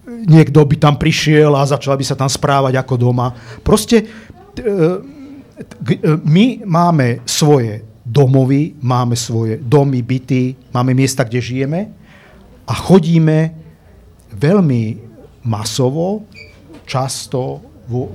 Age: 50-69